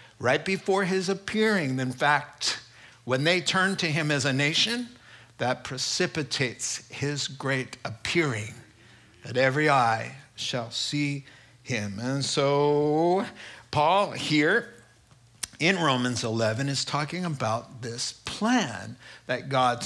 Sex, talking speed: male, 120 wpm